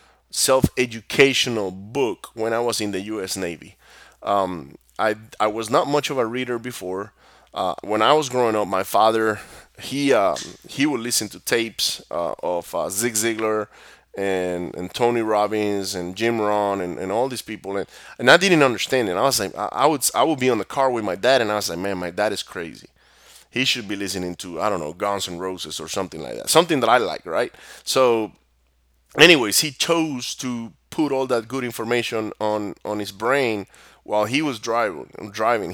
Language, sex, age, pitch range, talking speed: English, male, 30-49, 100-125 Hz, 200 wpm